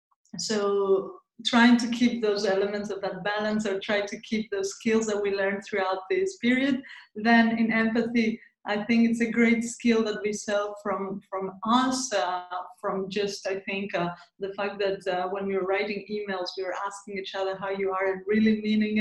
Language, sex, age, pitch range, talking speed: English, female, 20-39, 195-235 Hz, 195 wpm